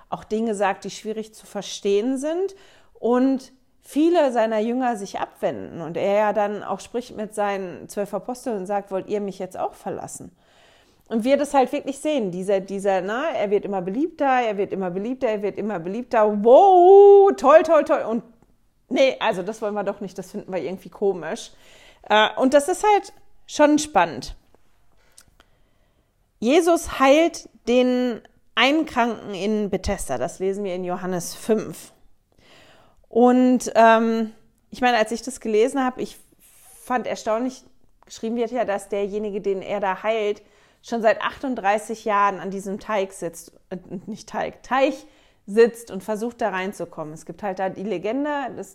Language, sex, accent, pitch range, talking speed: German, female, German, 200-250 Hz, 165 wpm